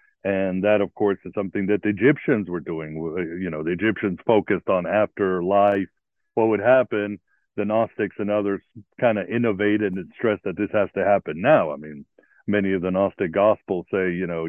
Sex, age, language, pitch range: male, 60-79, English, 90-115 Hz